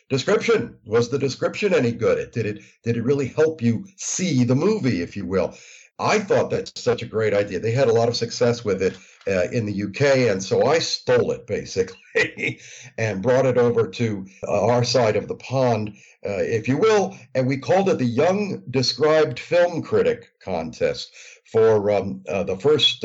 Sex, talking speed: male, 195 wpm